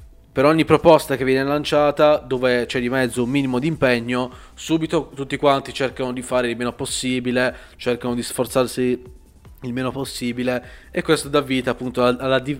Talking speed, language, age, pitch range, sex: 165 wpm, Italian, 20-39, 125-155 Hz, male